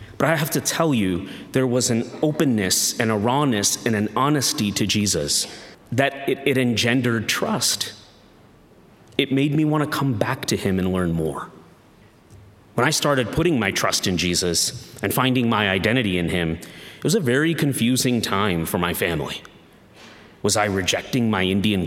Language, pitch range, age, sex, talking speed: English, 105-130 Hz, 30-49, male, 175 wpm